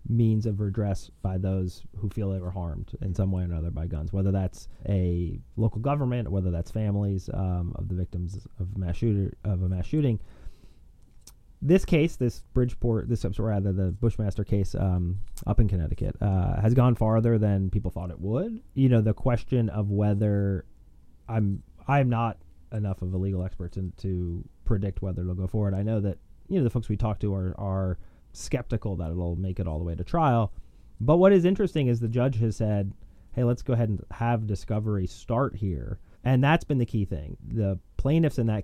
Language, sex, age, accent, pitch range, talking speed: English, male, 30-49, American, 95-115 Hz, 200 wpm